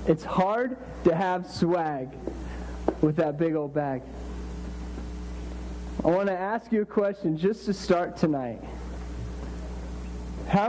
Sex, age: male, 40-59